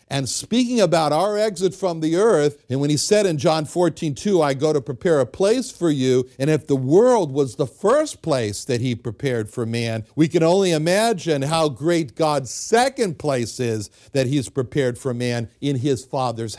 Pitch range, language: 125-195 Hz, English